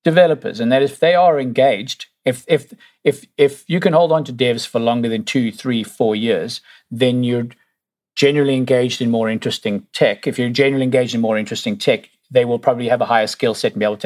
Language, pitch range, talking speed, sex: English, 110-155 Hz, 220 wpm, male